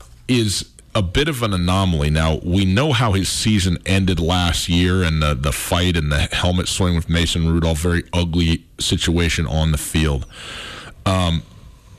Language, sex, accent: English, male, American